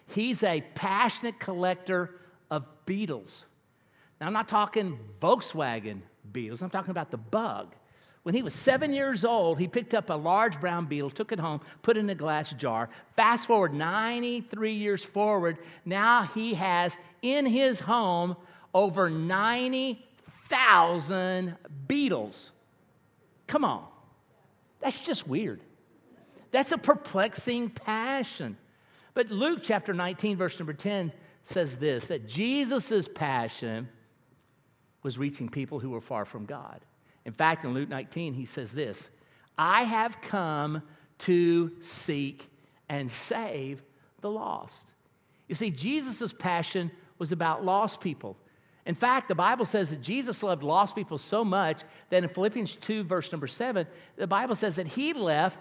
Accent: American